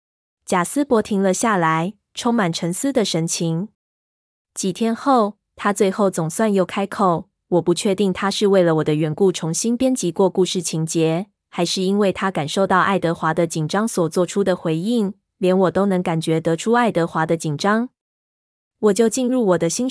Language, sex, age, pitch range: Chinese, female, 20-39, 170-215 Hz